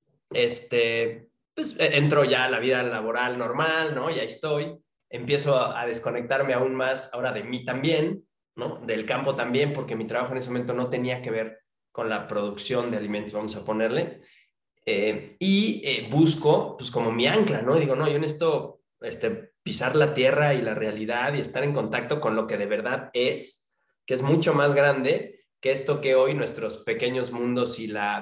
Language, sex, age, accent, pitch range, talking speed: Spanish, male, 20-39, Mexican, 125-160 Hz, 195 wpm